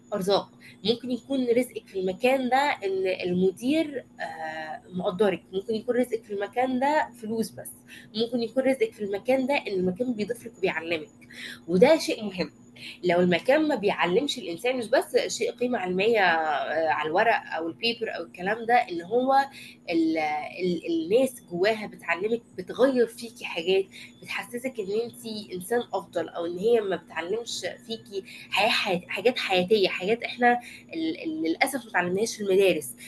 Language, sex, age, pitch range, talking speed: Arabic, female, 20-39, 190-260 Hz, 145 wpm